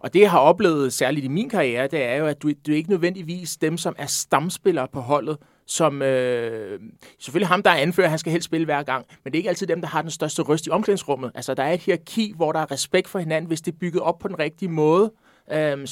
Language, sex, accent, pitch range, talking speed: Danish, male, native, 145-180 Hz, 270 wpm